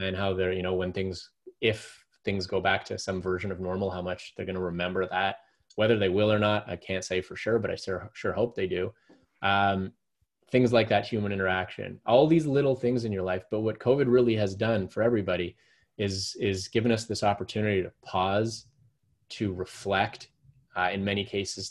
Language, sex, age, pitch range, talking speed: English, male, 20-39, 95-115 Hz, 205 wpm